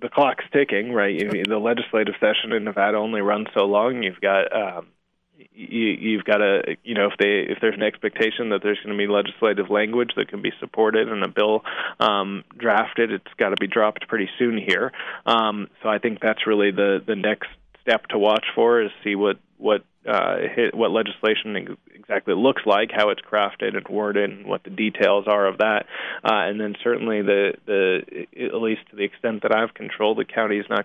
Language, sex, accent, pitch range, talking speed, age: English, male, American, 105-115 Hz, 210 wpm, 20-39